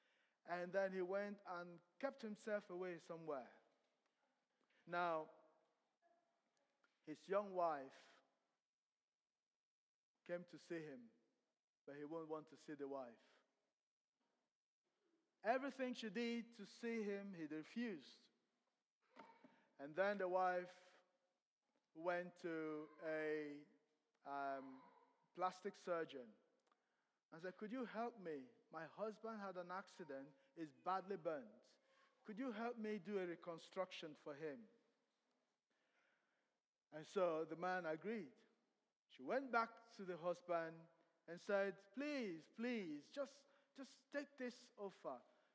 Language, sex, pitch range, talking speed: English, male, 165-235 Hz, 115 wpm